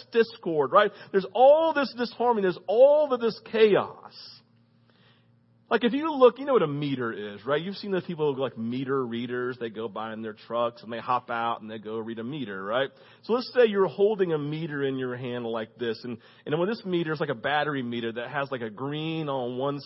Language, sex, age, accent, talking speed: English, male, 40-59, American, 225 wpm